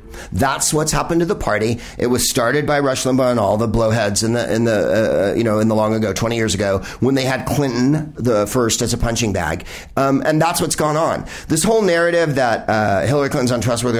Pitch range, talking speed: 120-160 Hz, 230 wpm